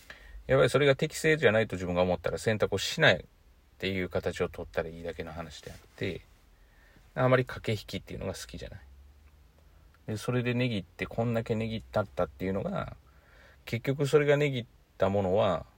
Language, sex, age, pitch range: Japanese, male, 40-59, 90-115 Hz